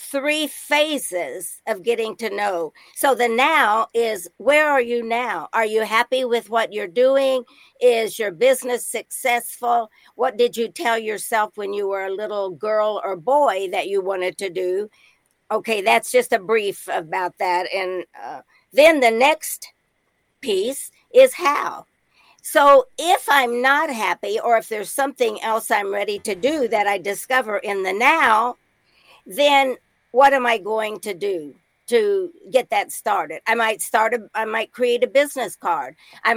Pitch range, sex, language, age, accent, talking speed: 210-265 Hz, female, English, 50-69, American, 165 wpm